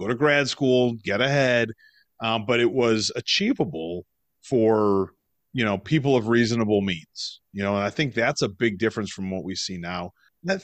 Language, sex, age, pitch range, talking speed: English, male, 30-49, 110-165 Hz, 190 wpm